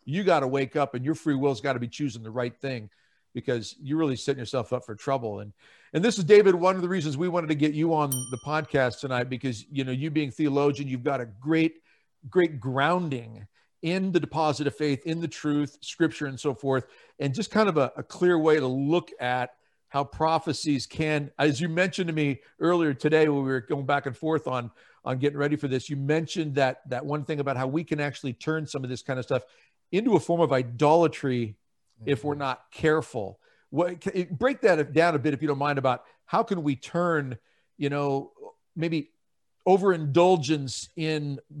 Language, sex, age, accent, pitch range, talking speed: English, male, 50-69, American, 130-160 Hz, 210 wpm